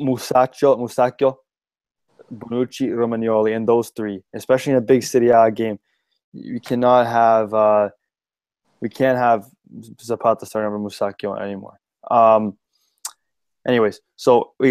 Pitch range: 110-125 Hz